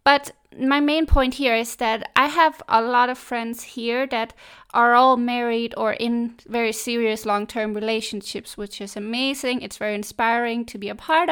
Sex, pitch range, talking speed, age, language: female, 215-255 Hz, 180 wpm, 20-39, English